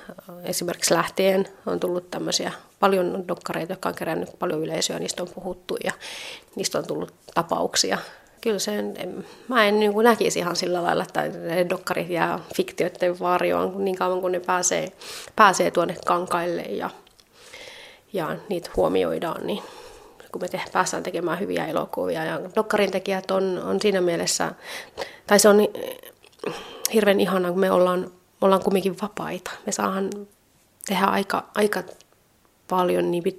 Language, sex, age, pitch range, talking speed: Finnish, female, 30-49, 180-210 Hz, 140 wpm